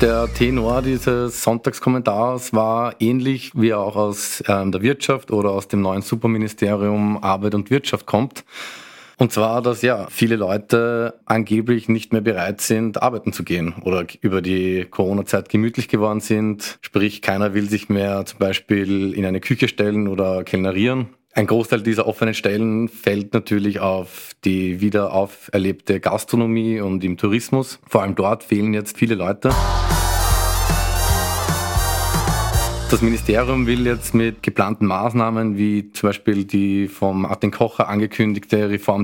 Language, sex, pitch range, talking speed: German, male, 100-115 Hz, 140 wpm